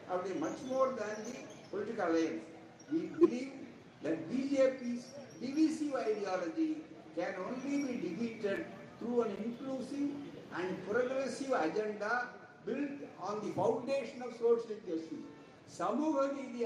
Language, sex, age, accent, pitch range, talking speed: Tamil, male, 60-79, native, 160-250 Hz, 125 wpm